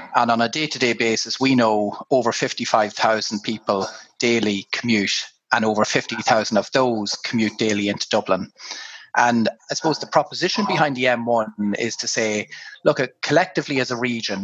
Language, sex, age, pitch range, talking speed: English, male, 30-49, 110-130 Hz, 160 wpm